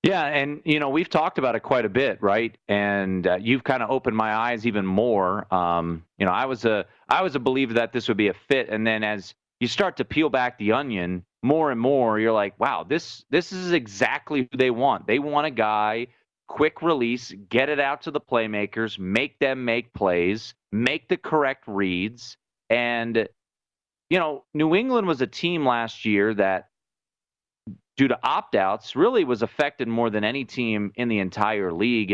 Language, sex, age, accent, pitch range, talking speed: English, male, 30-49, American, 100-130 Hz, 200 wpm